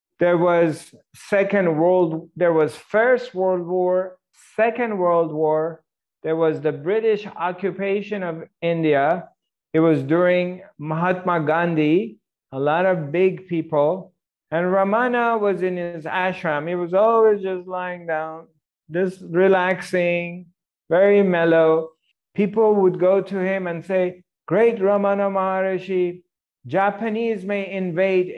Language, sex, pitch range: English, male, 160-195 Hz